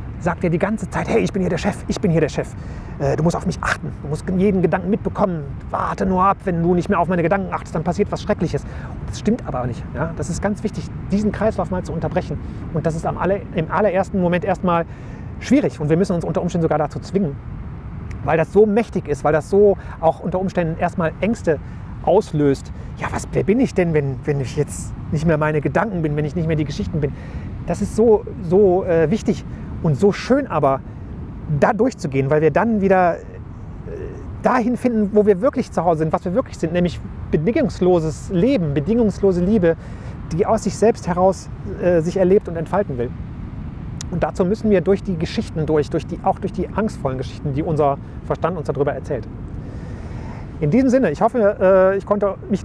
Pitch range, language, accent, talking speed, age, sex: 155-200 Hz, German, German, 205 wpm, 30-49, male